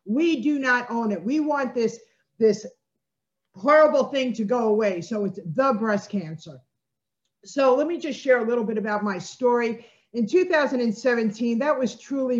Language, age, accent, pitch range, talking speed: English, 50-69, American, 195-245 Hz, 170 wpm